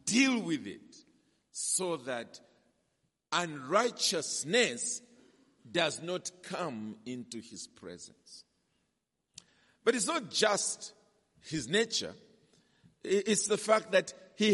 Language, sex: English, male